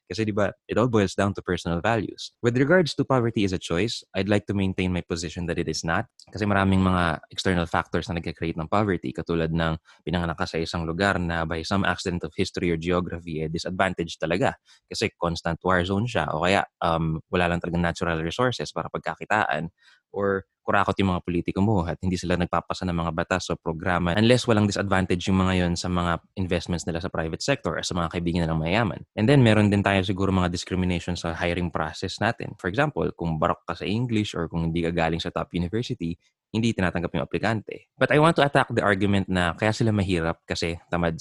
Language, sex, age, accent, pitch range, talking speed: English, male, 20-39, Filipino, 85-105 Hz, 210 wpm